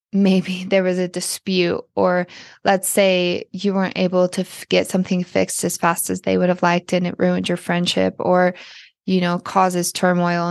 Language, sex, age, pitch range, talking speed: English, female, 20-39, 180-200 Hz, 185 wpm